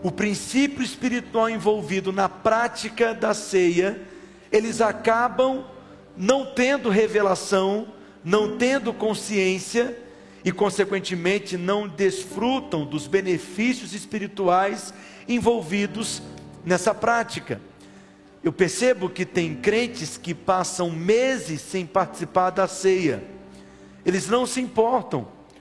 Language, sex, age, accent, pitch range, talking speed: Portuguese, male, 50-69, Brazilian, 175-235 Hz, 100 wpm